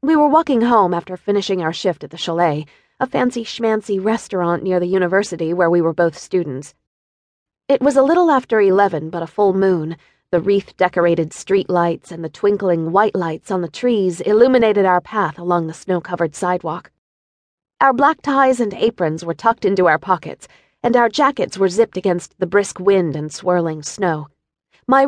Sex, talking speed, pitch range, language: female, 175 wpm, 170-230 Hz, English